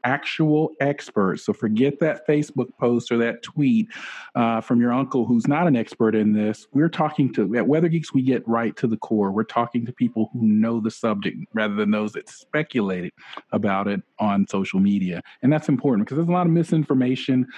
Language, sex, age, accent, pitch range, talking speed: English, male, 40-59, American, 110-135 Hz, 200 wpm